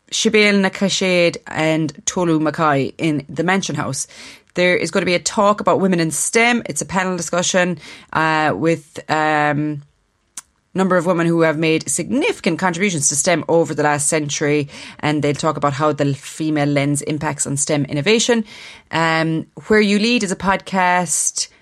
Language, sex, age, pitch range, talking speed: English, female, 30-49, 150-185 Hz, 165 wpm